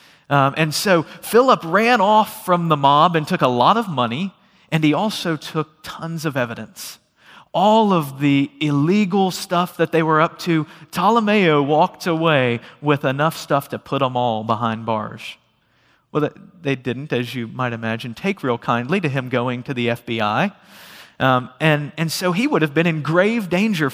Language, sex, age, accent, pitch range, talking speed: English, male, 40-59, American, 135-180 Hz, 175 wpm